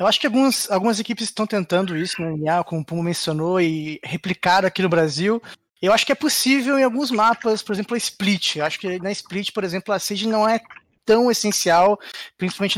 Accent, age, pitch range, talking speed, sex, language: Brazilian, 20-39, 175-220 Hz, 210 wpm, male, Portuguese